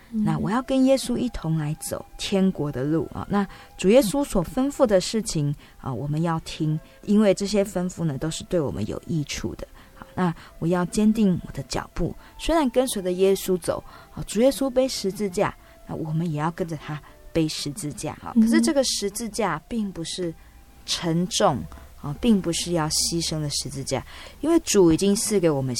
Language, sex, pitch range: Chinese, female, 145-195 Hz